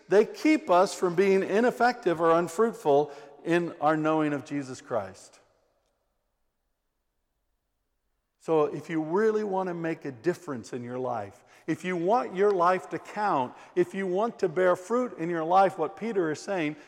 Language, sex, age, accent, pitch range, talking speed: English, male, 50-69, American, 165-225 Hz, 165 wpm